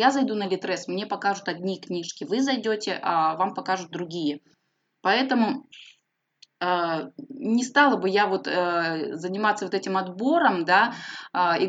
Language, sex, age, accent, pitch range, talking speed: Russian, female, 20-39, native, 175-225 Hz, 135 wpm